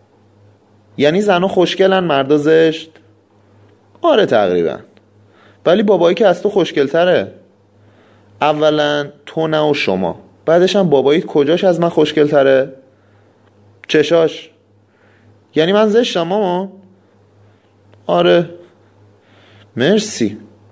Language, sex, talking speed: Persian, male, 90 wpm